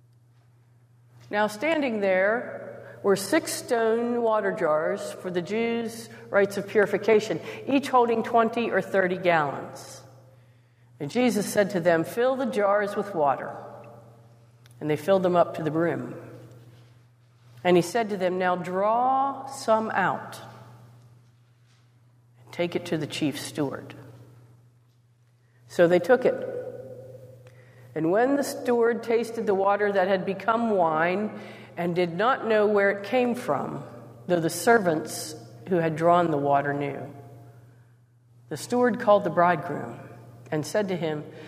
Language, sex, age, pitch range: English, female, 50-69, 130-220 Hz